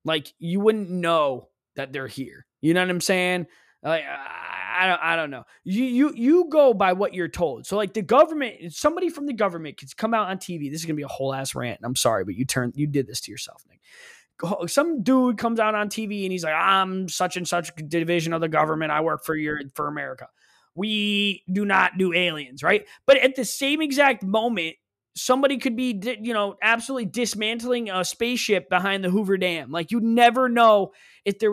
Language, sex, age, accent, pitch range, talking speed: English, male, 20-39, American, 170-245 Hz, 215 wpm